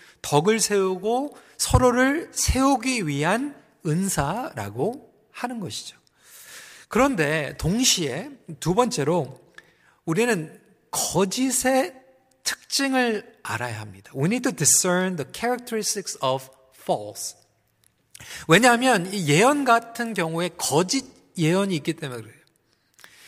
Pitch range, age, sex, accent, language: 170-260 Hz, 40-59, male, native, Korean